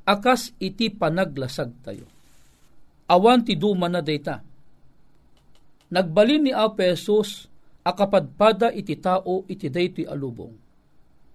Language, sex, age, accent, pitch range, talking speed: Filipino, male, 50-69, native, 155-215 Hz, 110 wpm